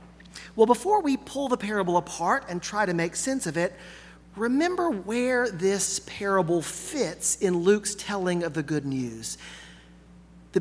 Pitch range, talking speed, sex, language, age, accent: 165-220 Hz, 155 wpm, male, English, 40-59, American